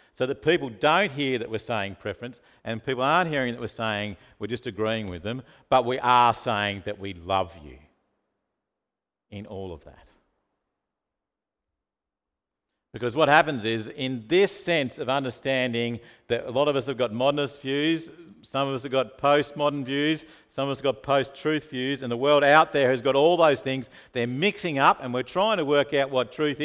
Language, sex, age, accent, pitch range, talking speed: English, male, 50-69, Australian, 120-190 Hz, 195 wpm